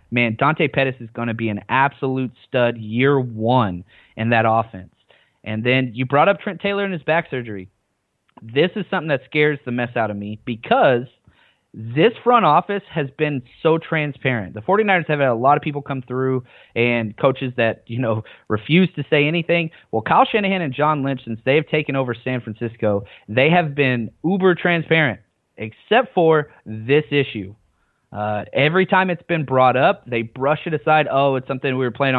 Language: English